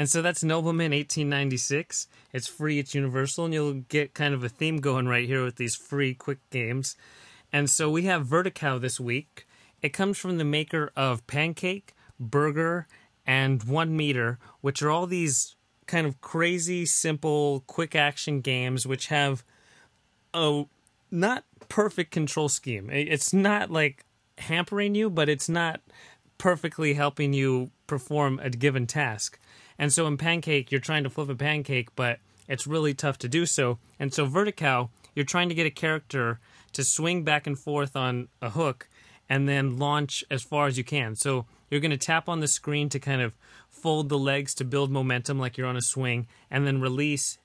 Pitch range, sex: 130-155 Hz, male